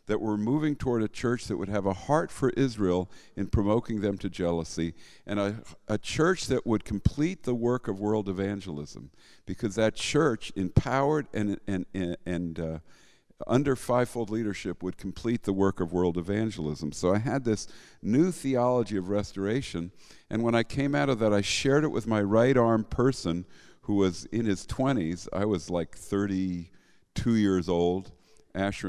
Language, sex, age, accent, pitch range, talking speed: English, male, 50-69, American, 90-115 Hz, 175 wpm